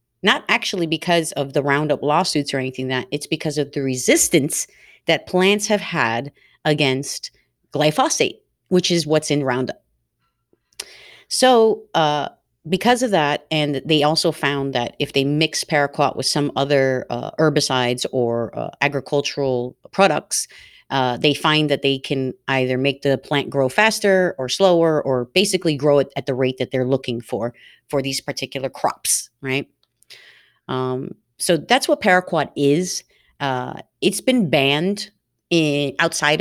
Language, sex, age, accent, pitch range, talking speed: English, female, 30-49, American, 130-160 Hz, 150 wpm